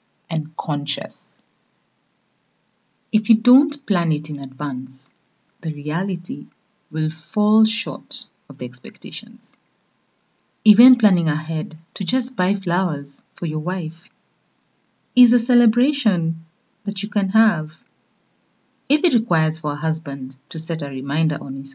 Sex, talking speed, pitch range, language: female, 125 wpm, 155-225 Hz, English